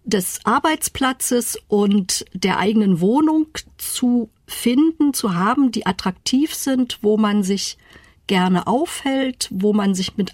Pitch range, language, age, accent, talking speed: 195-240 Hz, German, 50-69, German, 130 wpm